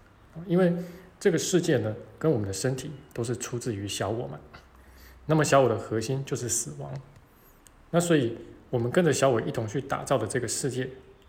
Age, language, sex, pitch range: 20-39, Chinese, male, 115-140 Hz